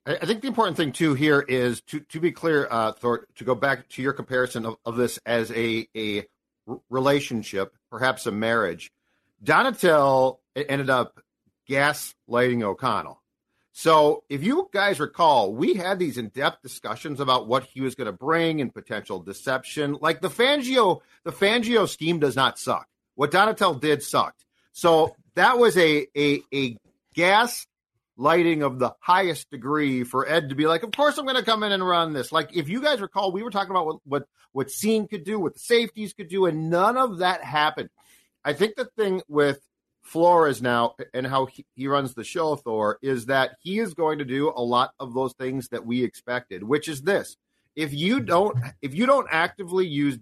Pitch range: 125-180 Hz